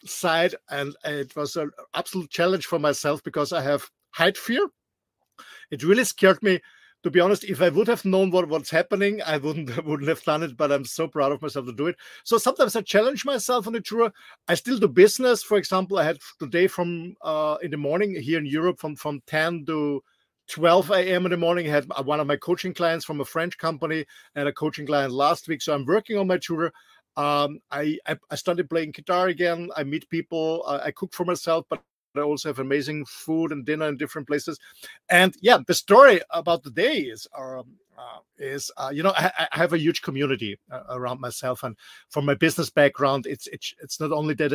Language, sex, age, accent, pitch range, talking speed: English, male, 50-69, German, 145-180 Hz, 220 wpm